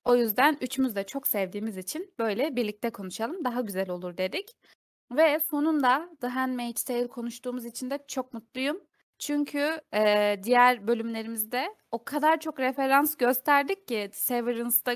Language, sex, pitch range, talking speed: Turkish, female, 215-285 Hz, 140 wpm